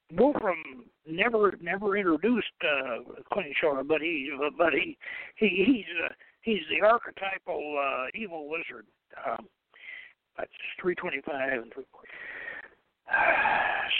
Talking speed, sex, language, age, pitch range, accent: 110 wpm, male, English, 60-79, 190-260 Hz, American